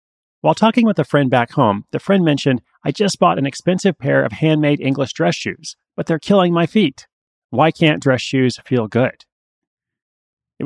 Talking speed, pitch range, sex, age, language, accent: 185 wpm, 120-155 Hz, male, 30-49, English, American